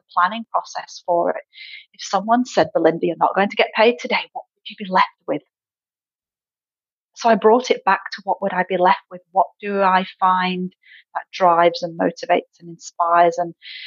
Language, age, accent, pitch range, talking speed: English, 30-49, British, 175-225 Hz, 190 wpm